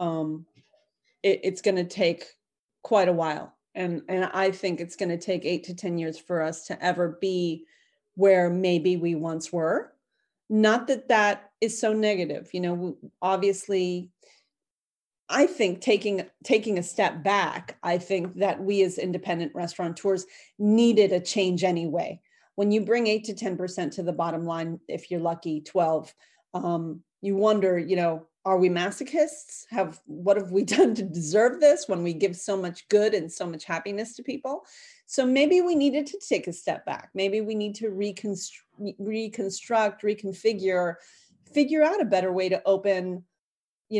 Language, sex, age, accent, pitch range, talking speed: English, female, 30-49, American, 175-210 Hz, 170 wpm